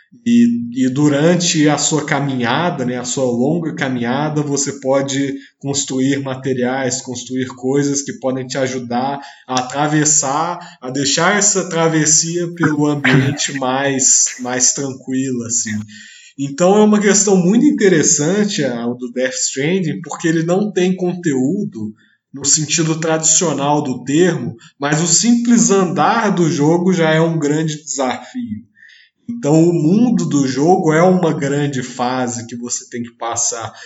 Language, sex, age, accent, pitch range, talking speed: Portuguese, male, 20-39, Brazilian, 130-175 Hz, 140 wpm